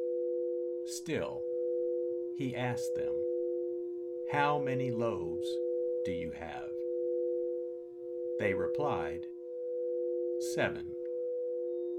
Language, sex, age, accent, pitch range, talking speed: English, male, 50-69, American, 120-170 Hz, 65 wpm